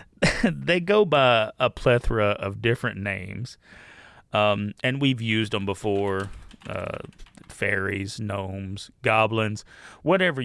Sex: male